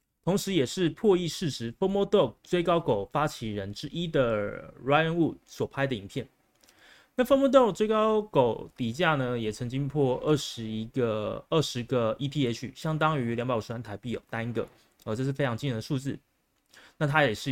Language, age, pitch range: Chinese, 30-49, 115-155 Hz